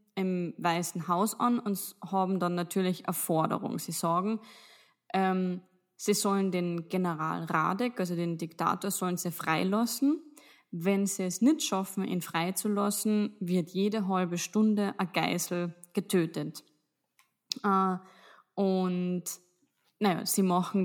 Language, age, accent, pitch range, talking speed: German, 20-39, German, 175-200 Hz, 120 wpm